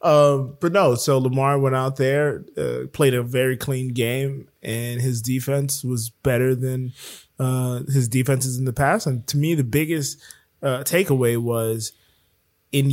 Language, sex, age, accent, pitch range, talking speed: English, male, 20-39, American, 125-155 Hz, 165 wpm